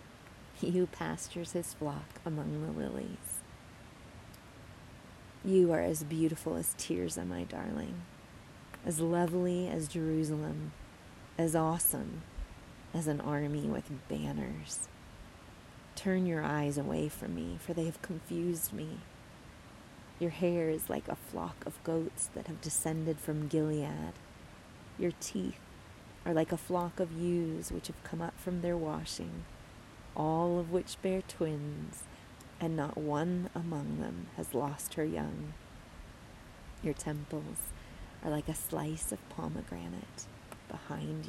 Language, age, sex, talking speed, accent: English, 20-39, female, 130 wpm, American